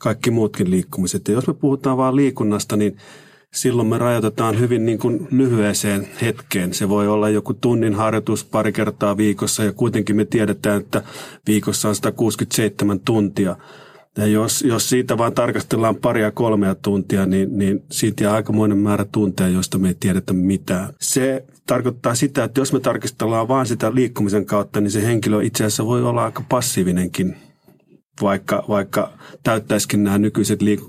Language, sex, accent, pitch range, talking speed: Finnish, male, native, 100-120 Hz, 160 wpm